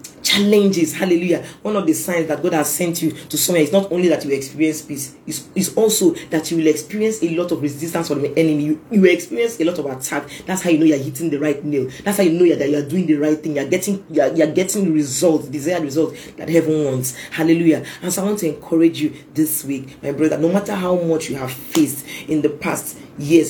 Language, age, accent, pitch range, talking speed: English, 40-59, Nigerian, 145-175 Hz, 245 wpm